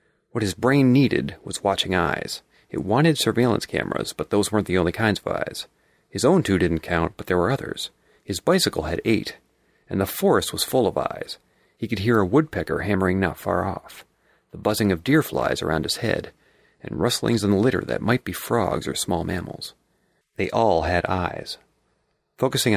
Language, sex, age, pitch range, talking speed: English, male, 40-59, 90-120 Hz, 190 wpm